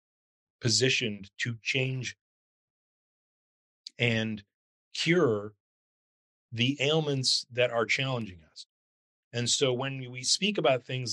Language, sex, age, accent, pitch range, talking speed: English, male, 40-59, American, 105-130 Hz, 95 wpm